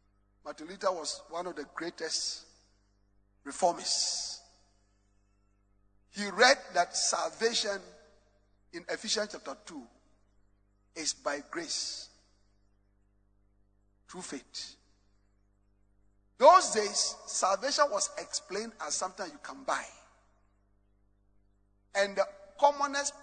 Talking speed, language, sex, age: 85 wpm, English, male, 50-69